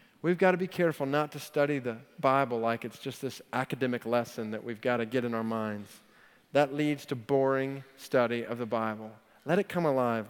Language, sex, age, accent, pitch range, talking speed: English, male, 40-59, American, 125-150 Hz, 210 wpm